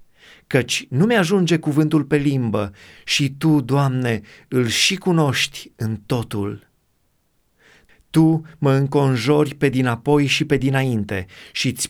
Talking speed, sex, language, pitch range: 120 wpm, male, Romanian, 125-165 Hz